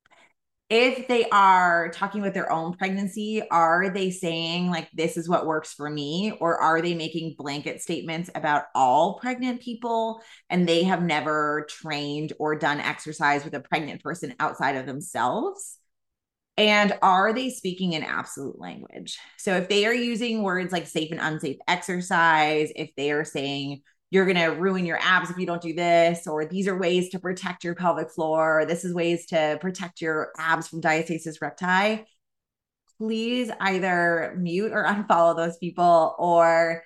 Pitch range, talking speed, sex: 160-195 Hz, 170 wpm, female